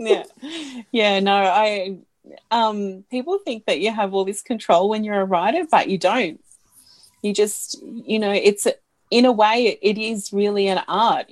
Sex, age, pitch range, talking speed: female, 30-49, 185-230 Hz, 185 wpm